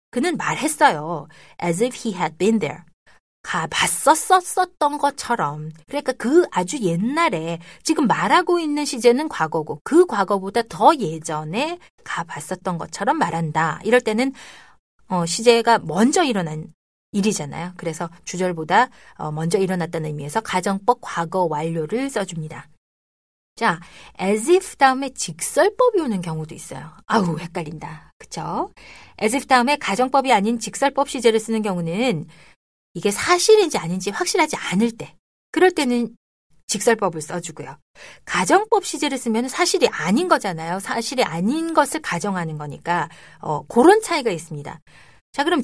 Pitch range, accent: 170-275 Hz, native